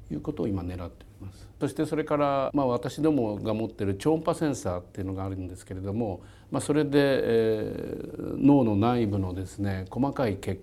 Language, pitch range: Japanese, 100-125 Hz